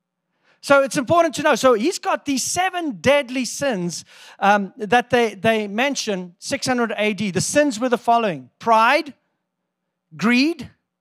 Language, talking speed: English, 140 wpm